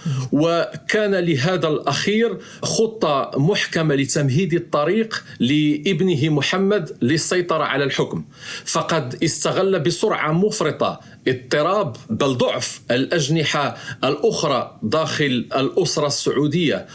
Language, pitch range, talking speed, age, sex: Arabic, 145-180 Hz, 85 wpm, 50-69, male